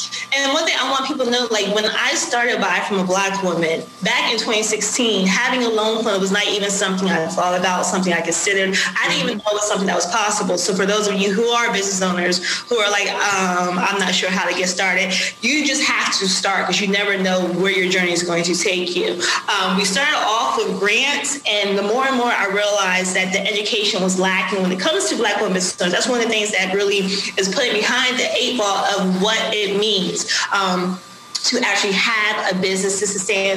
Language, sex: English, female